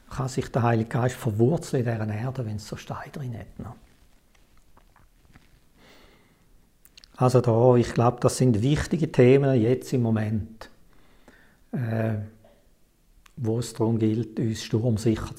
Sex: male